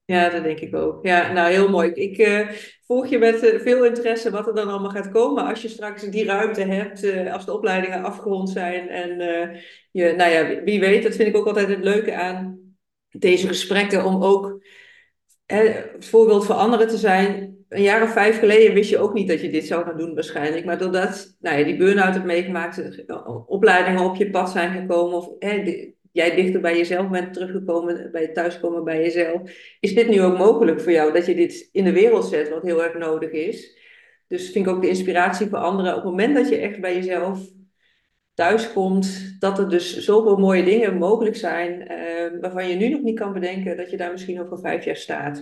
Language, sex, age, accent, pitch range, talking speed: Dutch, female, 40-59, Dutch, 175-210 Hz, 205 wpm